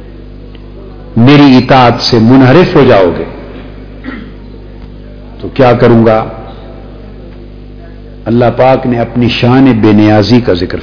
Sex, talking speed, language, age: male, 110 wpm, Urdu, 50-69